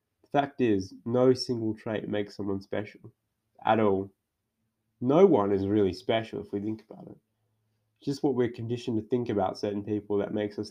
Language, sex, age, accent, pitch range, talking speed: English, male, 20-39, Australian, 100-115 Hz, 180 wpm